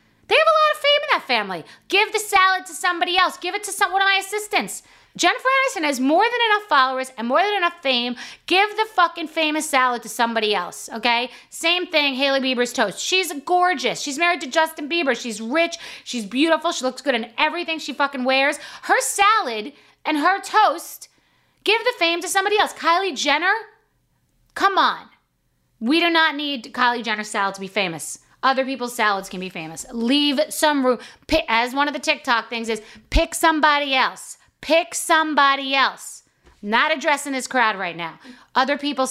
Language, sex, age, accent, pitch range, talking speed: English, female, 30-49, American, 210-330 Hz, 185 wpm